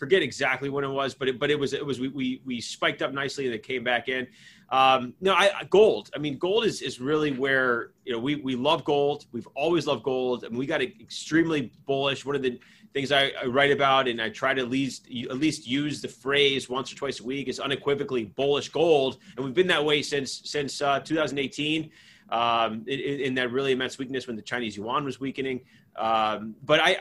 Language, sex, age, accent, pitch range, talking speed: English, male, 30-49, American, 130-160 Hz, 230 wpm